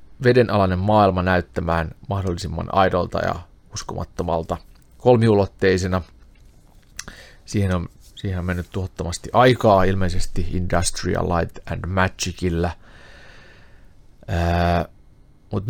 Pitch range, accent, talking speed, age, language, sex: 90-115 Hz, native, 80 wpm, 30-49, Finnish, male